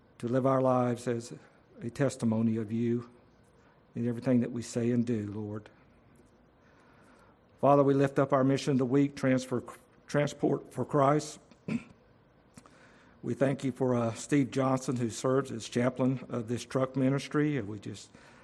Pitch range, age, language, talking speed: 120-135 Hz, 50-69, English, 155 wpm